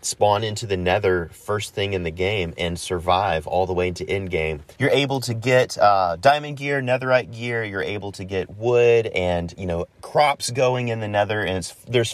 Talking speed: 205 wpm